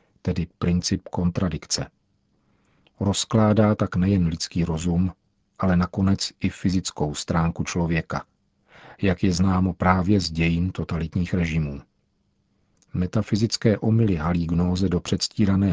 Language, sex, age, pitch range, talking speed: Czech, male, 50-69, 85-100 Hz, 105 wpm